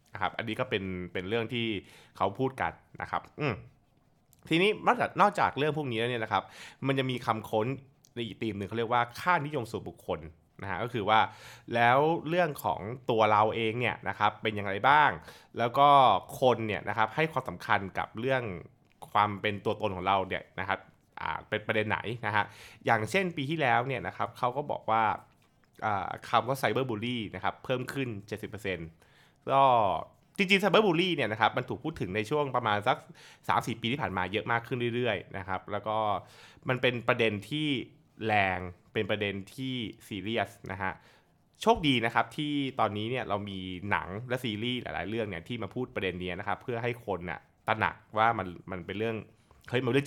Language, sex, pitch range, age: Thai, male, 100-130 Hz, 20-39